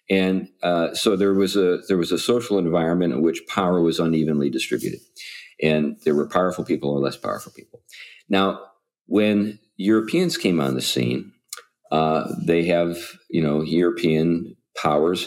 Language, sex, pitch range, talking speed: English, male, 75-95 Hz, 155 wpm